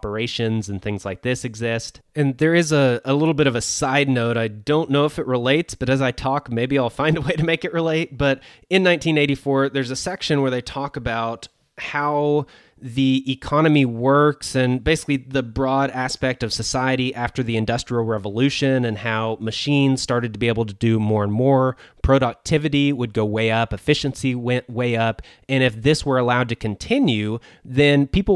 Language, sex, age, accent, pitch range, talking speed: English, male, 20-39, American, 115-140 Hz, 195 wpm